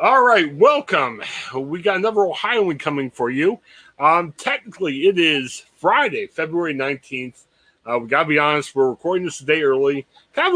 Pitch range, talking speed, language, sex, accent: 145-215 Hz, 170 wpm, English, male, American